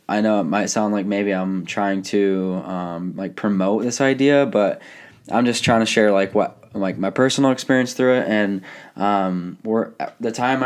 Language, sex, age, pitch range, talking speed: English, male, 20-39, 95-110 Hz, 190 wpm